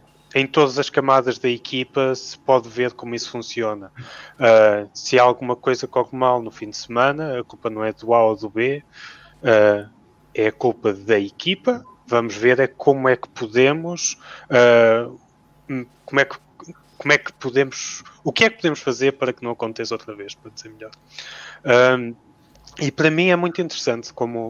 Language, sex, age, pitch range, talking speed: English, male, 20-39, 115-130 Hz, 185 wpm